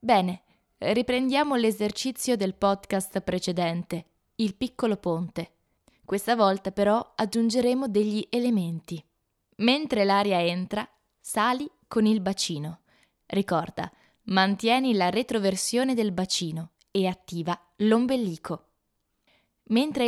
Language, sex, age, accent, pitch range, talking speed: Italian, female, 20-39, native, 175-225 Hz, 95 wpm